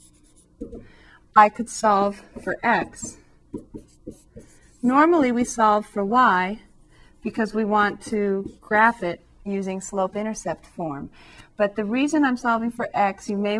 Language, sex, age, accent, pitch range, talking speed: English, female, 30-49, American, 180-210 Hz, 125 wpm